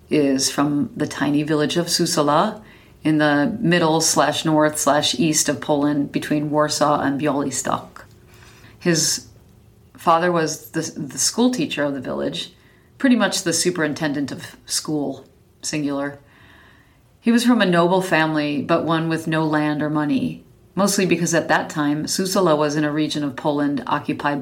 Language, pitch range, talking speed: English, 145-165 Hz, 155 wpm